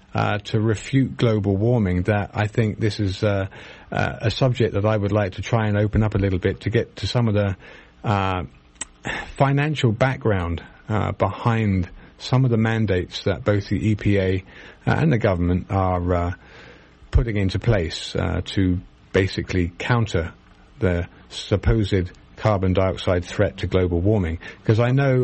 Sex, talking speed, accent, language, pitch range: male, 165 wpm, British, English, 95-115 Hz